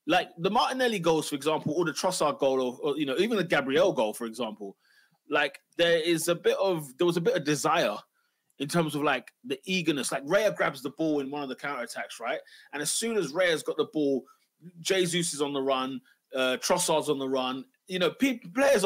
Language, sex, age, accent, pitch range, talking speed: English, male, 20-39, British, 140-180 Hz, 230 wpm